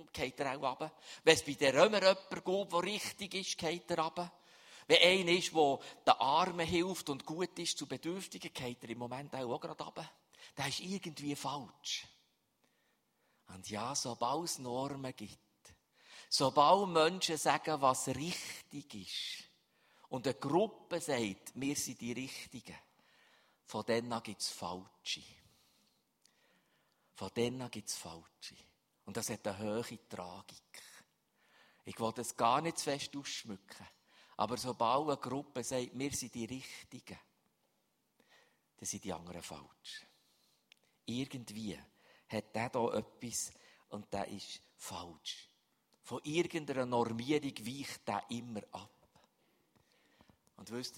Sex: male